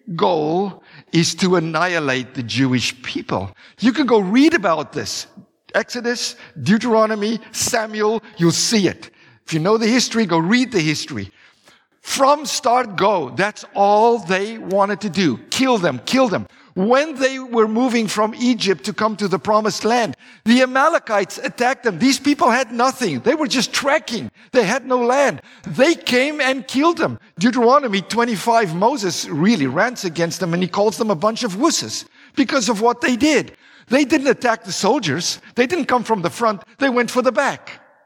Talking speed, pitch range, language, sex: 175 wpm, 185-255 Hz, English, male